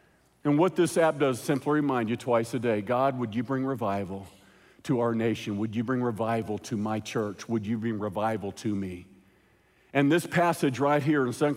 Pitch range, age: 130-195 Hz, 50-69